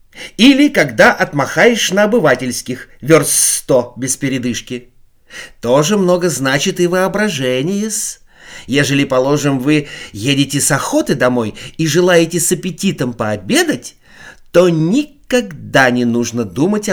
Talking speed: 110 wpm